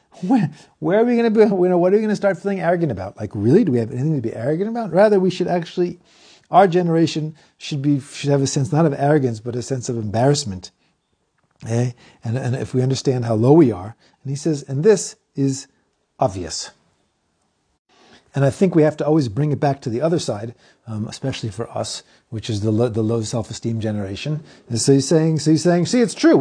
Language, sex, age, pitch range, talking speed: English, male, 40-59, 120-160 Hz, 230 wpm